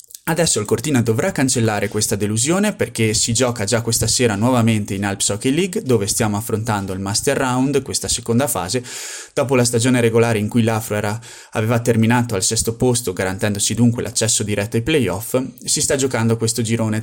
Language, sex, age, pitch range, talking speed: Italian, male, 20-39, 105-125 Hz, 180 wpm